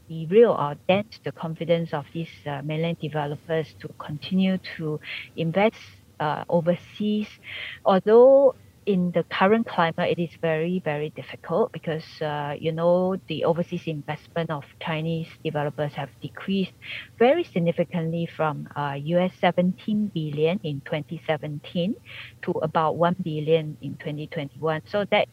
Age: 50-69